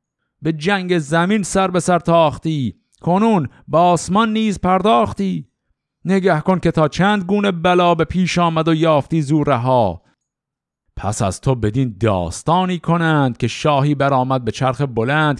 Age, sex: 50-69, male